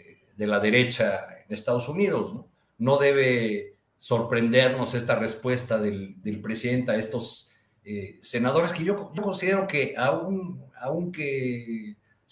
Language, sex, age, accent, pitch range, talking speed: Spanish, male, 50-69, Mexican, 110-135 Hz, 125 wpm